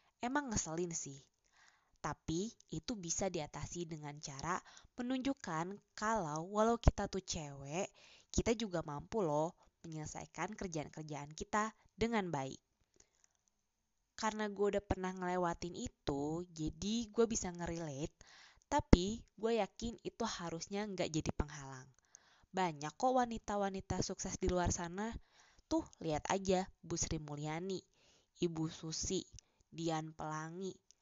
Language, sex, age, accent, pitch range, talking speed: Indonesian, female, 20-39, native, 160-210 Hz, 110 wpm